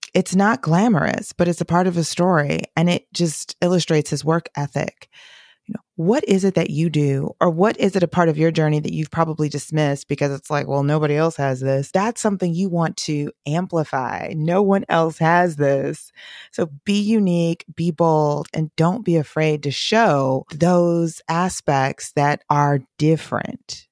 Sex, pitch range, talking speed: female, 145-180 Hz, 180 wpm